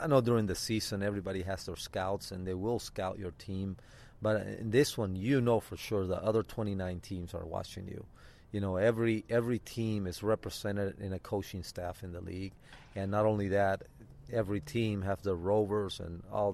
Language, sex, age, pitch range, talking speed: English, male, 30-49, 95-110 Hz, 200 wpm